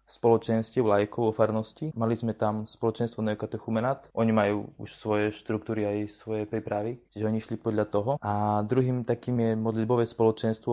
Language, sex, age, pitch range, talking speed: Slovak, male, 20-39, 110-120 Hz, 155 wpm